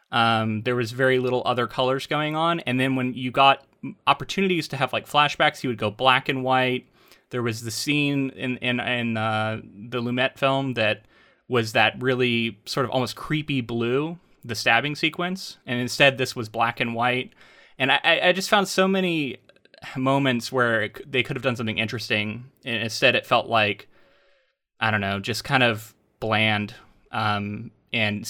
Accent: American